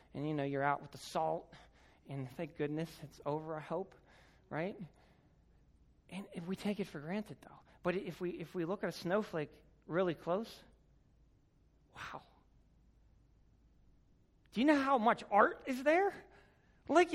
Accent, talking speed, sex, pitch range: American, 155 wpm, male, 170-260 Hz